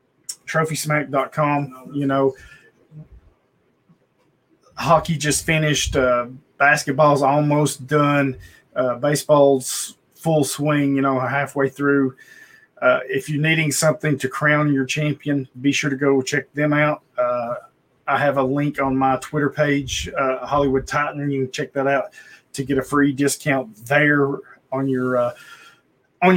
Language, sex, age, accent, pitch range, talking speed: English, male, 30-49, American, 130-150 Hz, 135 wpm